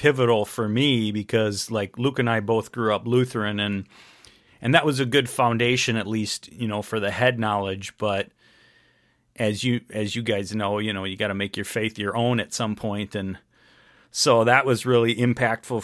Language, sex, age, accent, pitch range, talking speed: English, male, 40-59, American, 105-125 Hz, 200 wpm